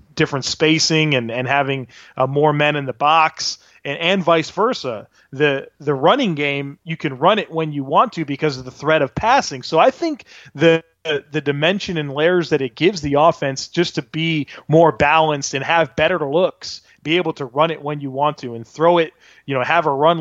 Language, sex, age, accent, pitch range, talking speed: English, male, 30-49, American, 135-160 Hz, 215 wpm